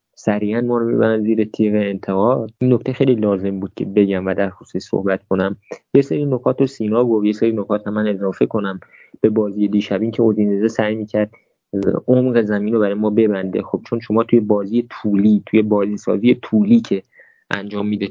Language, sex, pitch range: Persian, male, 100-115 Hz